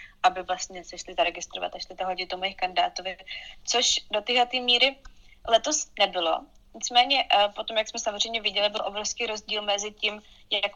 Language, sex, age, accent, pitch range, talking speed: Czech, female, 20-39, native, 185-220 Hz, 165 wpm